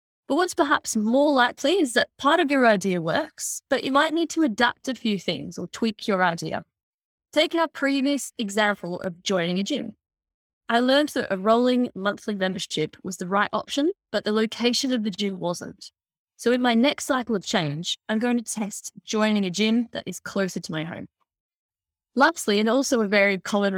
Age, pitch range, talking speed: 20-39, 195-265 Hz, 195 wpm